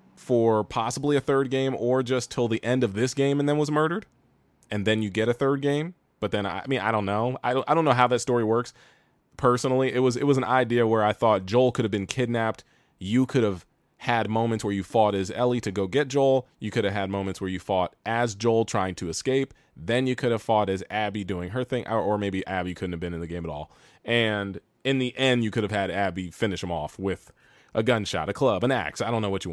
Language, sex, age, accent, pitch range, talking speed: English, male, 20-39, American, 100-130 Hz, 255 wpm